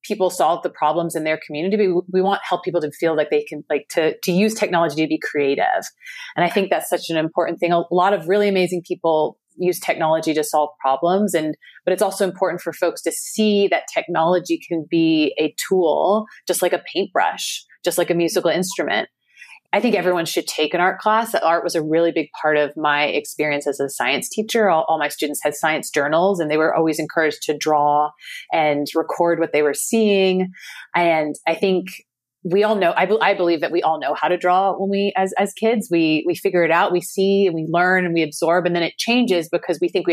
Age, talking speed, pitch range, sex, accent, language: 30-49, 225 wpm, 155-185 Hz, female, American, English